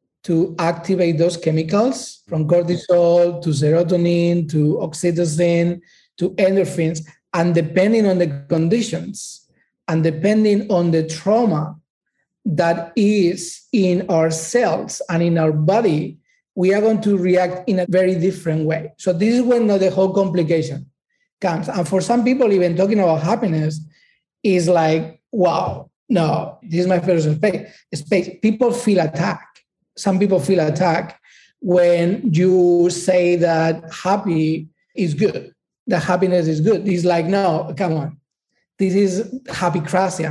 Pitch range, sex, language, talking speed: 170-195 Hz, male, English, 140 wpm